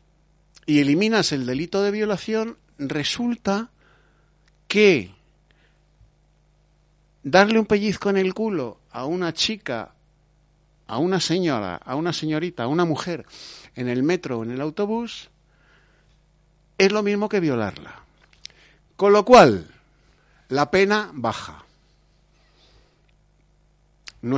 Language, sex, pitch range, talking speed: Spanish, male, 120-165 Hz, 110 wpm